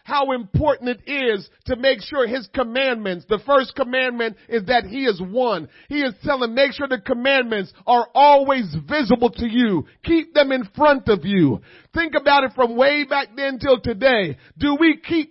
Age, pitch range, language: 40-59, 230-280 Hz, English